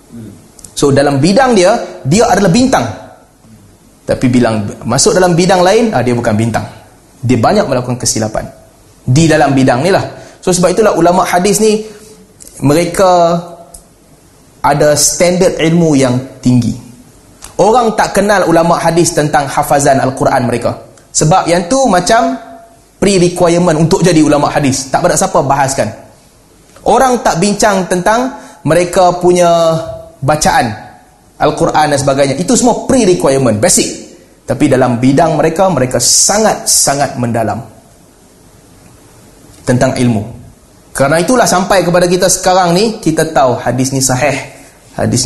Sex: male